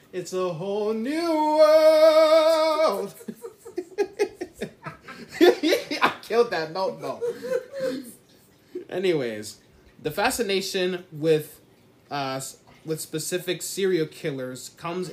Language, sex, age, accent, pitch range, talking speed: English, male, 20-39, American, 130-190 Hz, 80 wpm